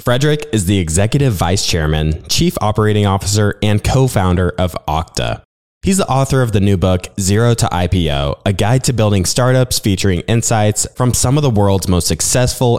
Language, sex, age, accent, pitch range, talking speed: English, male, 20-39, American, 90-115 Hz, 175 wpm